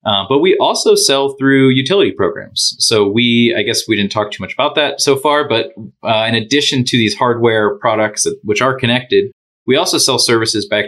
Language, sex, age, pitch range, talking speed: English, male, 30-49, 100-130 Hz, 210 wpm